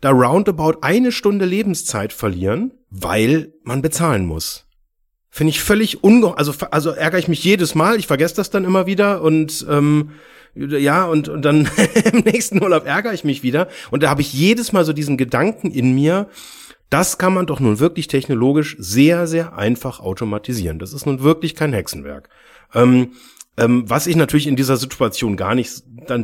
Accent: German